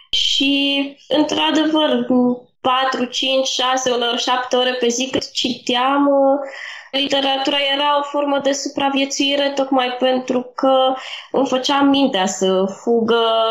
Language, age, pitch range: Romanian, 20-39, 215-260 Hz